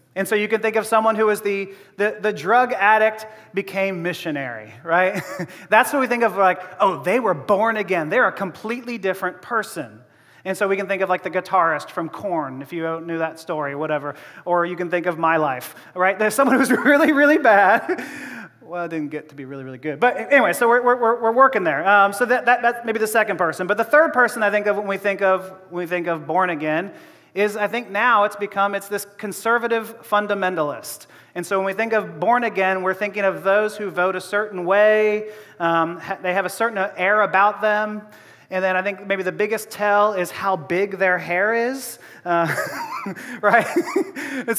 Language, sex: English, male